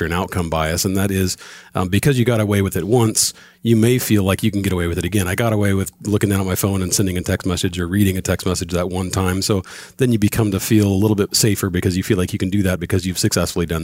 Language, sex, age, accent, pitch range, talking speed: English, male, 40-59, American, 90-105 Hz, 300 wpm